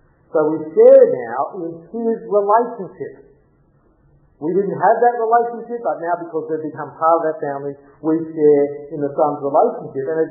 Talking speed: 170 wpm